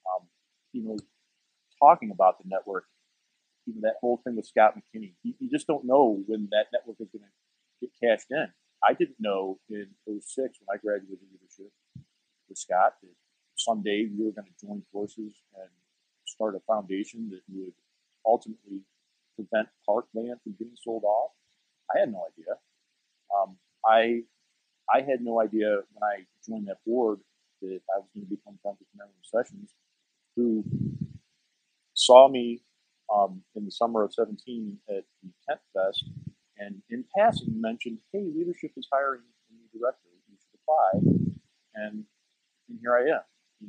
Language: English